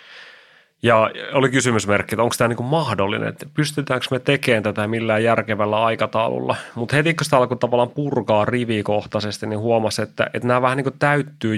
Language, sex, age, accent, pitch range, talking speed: Finnish, male, 30-49, native, 110-130 Hz, 170 wpm